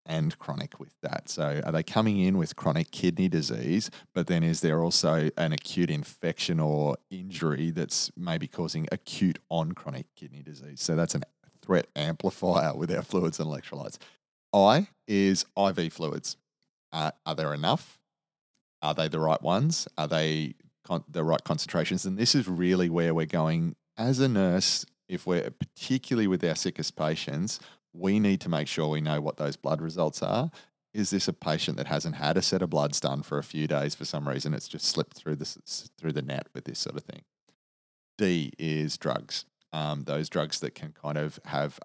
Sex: male